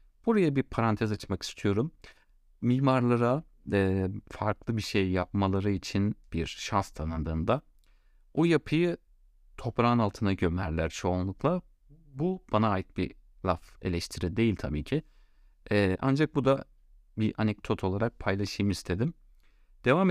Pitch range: 85-115 Hz